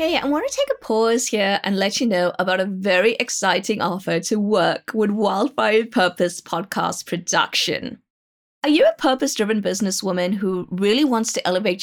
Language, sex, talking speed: English, female, 175 wpm